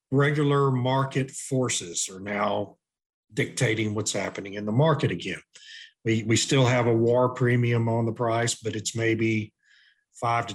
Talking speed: 150 wpm